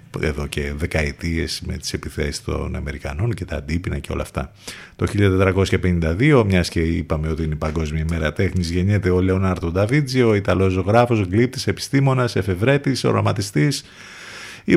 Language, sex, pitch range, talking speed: Greek, male, 85-115 Hz, 145 wpm